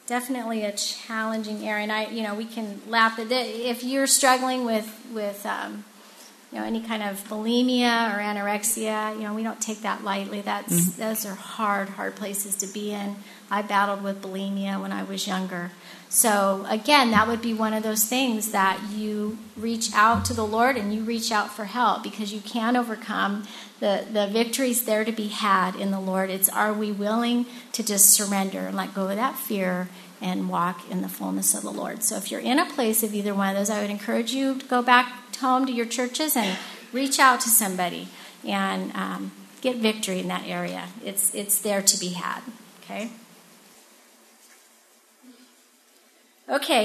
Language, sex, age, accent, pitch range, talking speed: English, female, 40-59, American, 200-240 Hz, 190 wpm